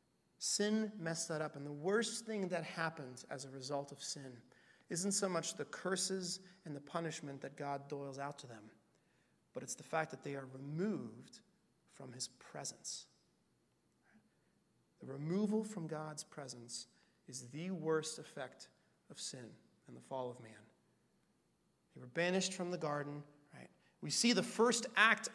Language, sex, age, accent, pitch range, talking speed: English, male, 30-49, American, 140-190 Hz, 160 wpm